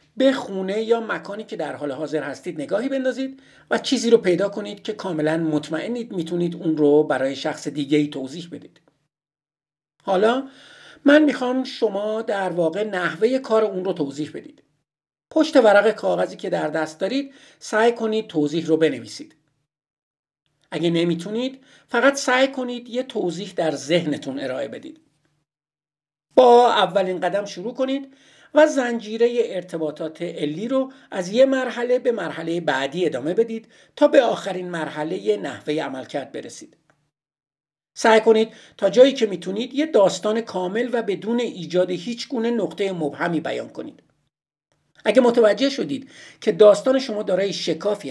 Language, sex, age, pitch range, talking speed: Persian, male, 50-69, 155-240 Hz, 140 wpm